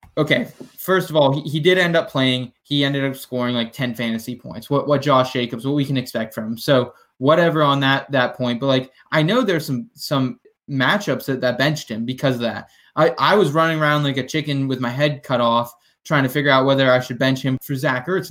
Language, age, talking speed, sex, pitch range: English, 20-39, 245 wpm, male, 125-150 Hz